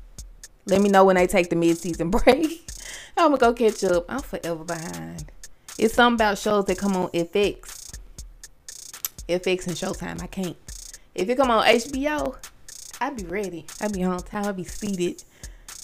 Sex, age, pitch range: female, 20-39, 180-245 Hz